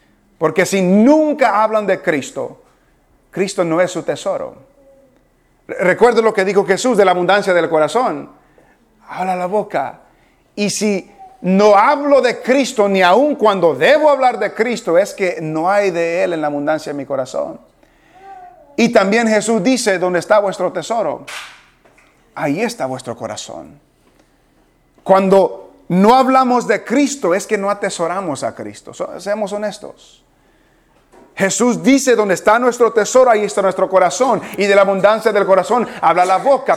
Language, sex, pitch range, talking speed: English, male, 180-230 Hz, 150 wpm